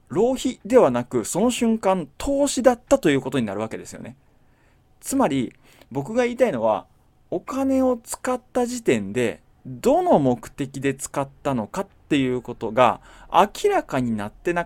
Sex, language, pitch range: male, Japanese, 135-220 Hz